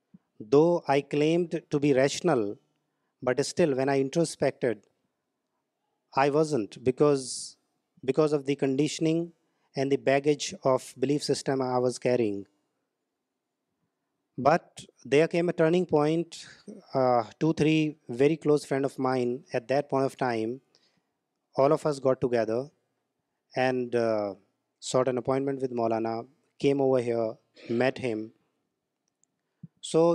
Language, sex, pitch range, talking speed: Urdu, male, 135-165 Hz, 125 wpm